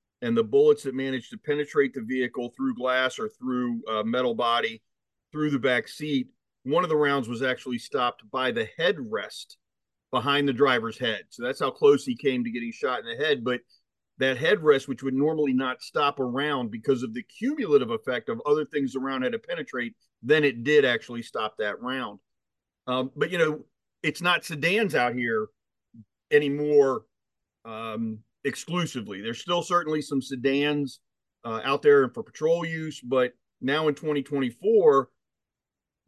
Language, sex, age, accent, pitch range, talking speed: English, male, 40-59, American, 130-210 Hz, 170 wpm